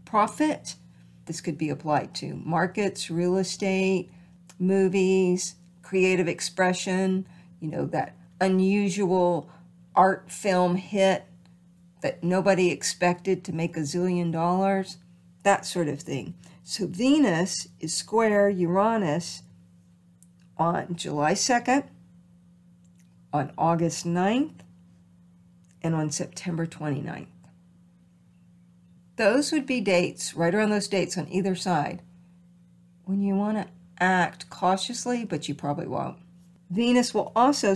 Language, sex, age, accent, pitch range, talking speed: English, female, 50-69, American, 165-195 Hz, 110 wpm